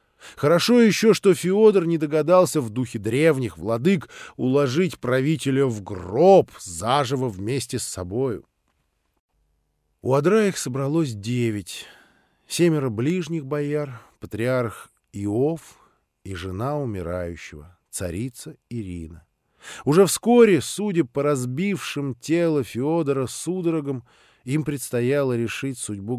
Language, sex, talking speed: Russian, male, 100 wpm